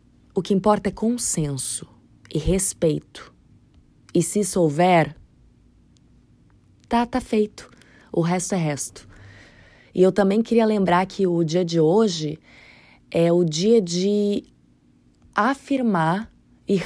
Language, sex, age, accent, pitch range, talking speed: Portuguese, female, 20-39, Brazilian, 165-210 Hz, 120 wpm